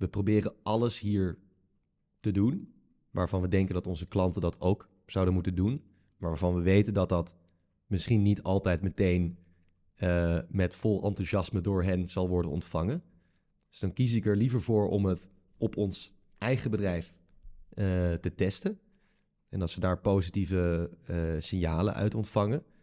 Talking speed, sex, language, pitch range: 160 wpm, male, English, 90-105 Hz